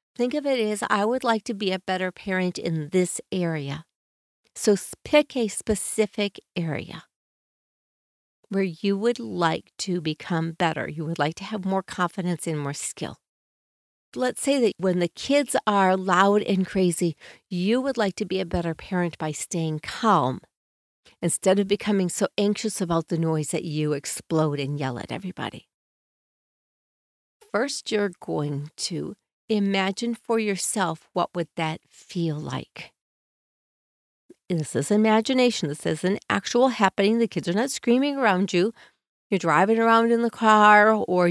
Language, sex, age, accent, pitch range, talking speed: English, female, 50-69, American, 170-215 Hz, 155 wpm